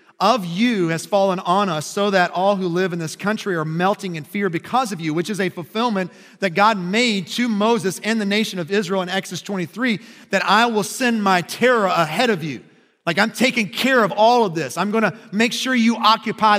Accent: American